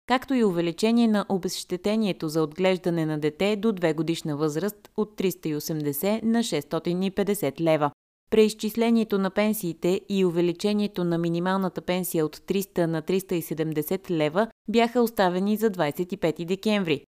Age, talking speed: 20-39, 125 wpm